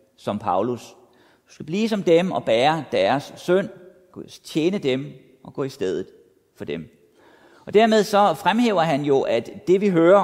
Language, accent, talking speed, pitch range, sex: Danish, native, 170 wpm, 120-185 Hz, male